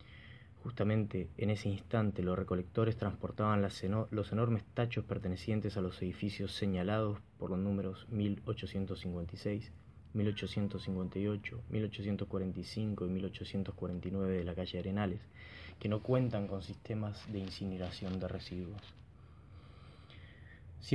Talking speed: 110 wpm